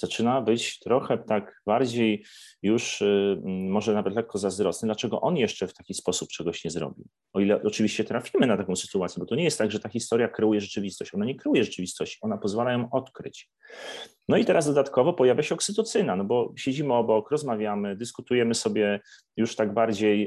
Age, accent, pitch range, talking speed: 30-49, native, 95-120 Hz, 185 wpm